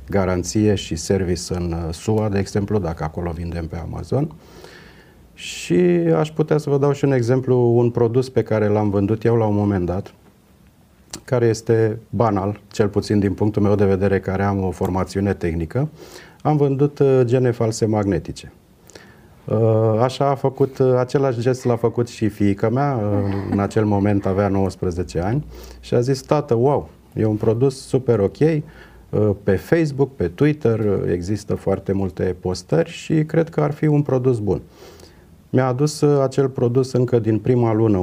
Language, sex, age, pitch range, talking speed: Romanian, male, 30-49, 100-125 Hz, 155 wpm